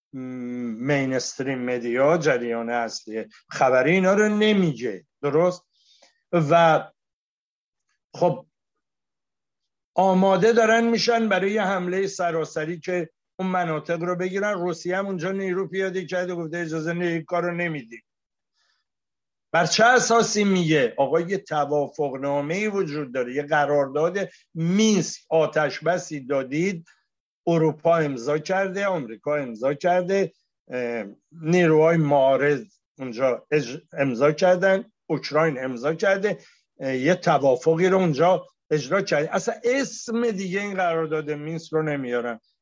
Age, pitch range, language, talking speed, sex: 60-79, 150-190 Hz, Persian, 105 wpm, male